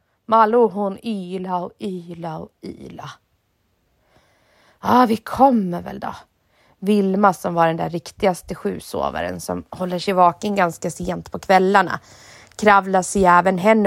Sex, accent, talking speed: female, Swedish, 140 wpm